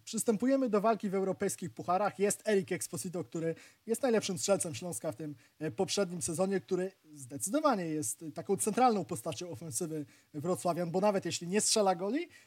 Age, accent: 20-39, native